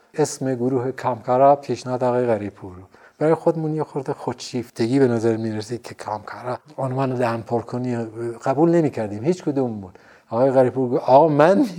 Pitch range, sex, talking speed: 120-145 Hz, male, 155 wpm